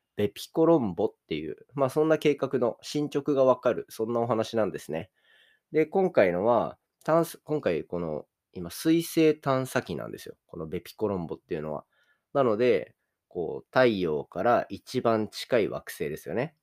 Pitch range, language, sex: 105-155 Hz, Japanese, male